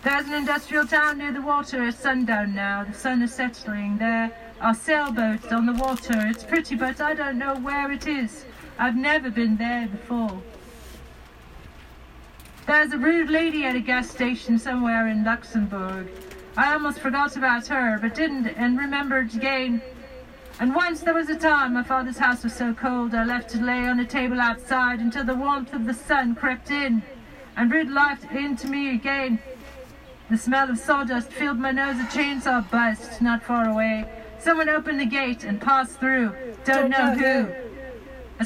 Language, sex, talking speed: English, female, 175 wpm